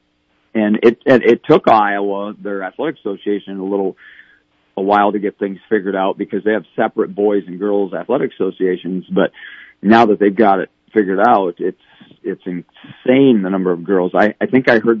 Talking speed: 190 wpm